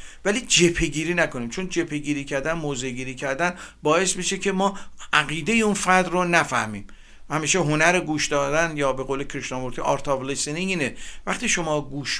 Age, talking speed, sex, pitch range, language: 50-69, 150 wpm, male, 145-185 Hz, Persian